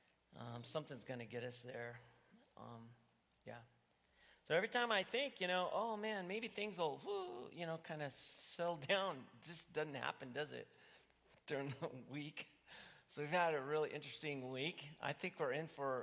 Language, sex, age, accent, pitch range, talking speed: English, male, 40-59, American, 120-150 Hz, 175 wpm